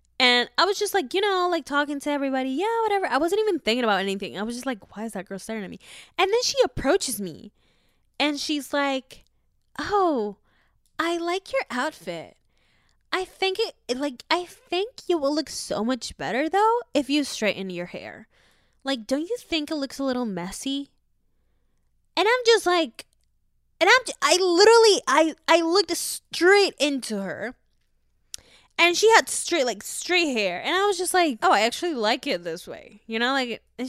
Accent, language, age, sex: American, English, 10-29, female